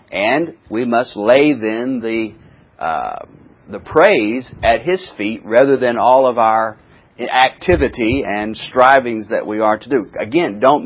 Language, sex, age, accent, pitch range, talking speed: English, male, 40-59, American, 105-135 Hz, 150 wpm